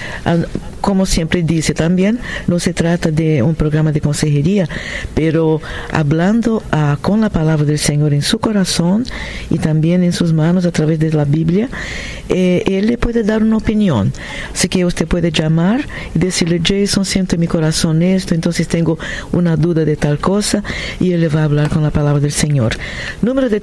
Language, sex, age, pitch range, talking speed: Spanish, female, 50-69, 155-200 Hz, 185 wpm